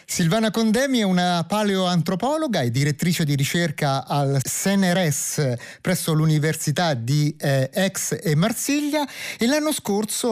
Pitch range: 135-185 Hz